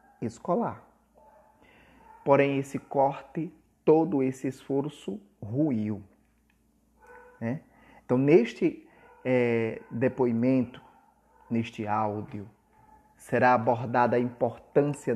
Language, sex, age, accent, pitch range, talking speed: Portuguese, male, 30-49, Brazilian, 115-140 Hz, 75 wpm